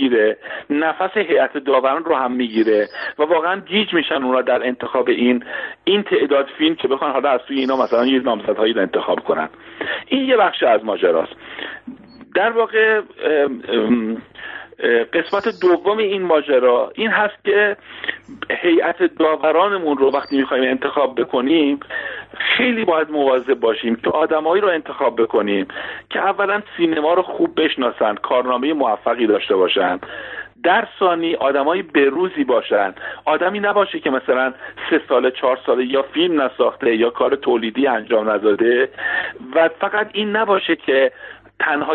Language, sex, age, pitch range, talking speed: Persian, male, 50-69, 135-210 Hz, 140 wpm